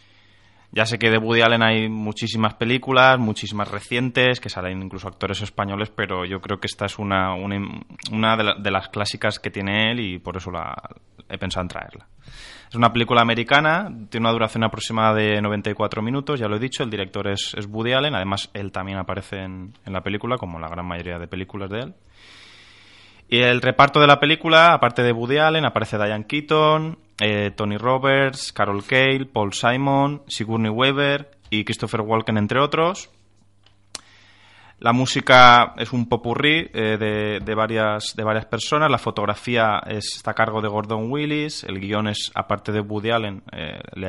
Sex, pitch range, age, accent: male, 100-120 Hz, 20-39, Spanish